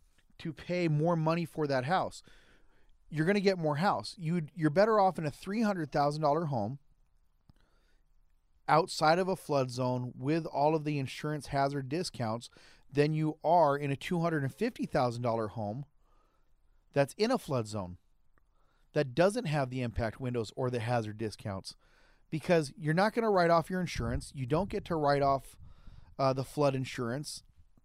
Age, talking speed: 40-59, 155 wpm